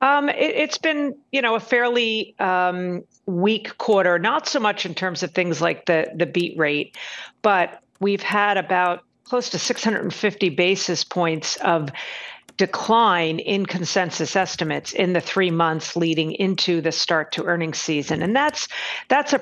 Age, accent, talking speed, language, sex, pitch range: 50-69, American, 170 wpm, English, female, 160-195 Hz